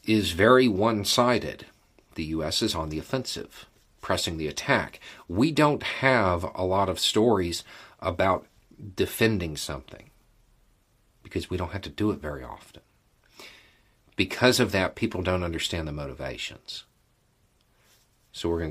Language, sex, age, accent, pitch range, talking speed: English, male, 40-59, American, 80-105 Hz, 135 wpm